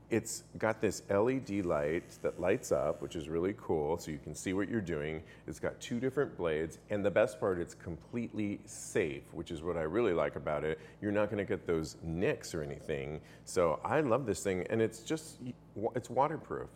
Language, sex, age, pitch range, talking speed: English, male, 40-59, 90-110 Hz, 205 wpm